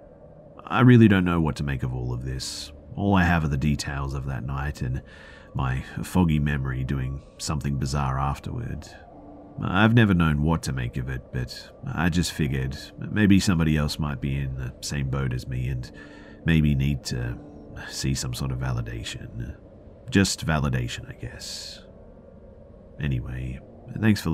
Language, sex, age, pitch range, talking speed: English, male, 40-59, 65-100 Hz, 165 wpm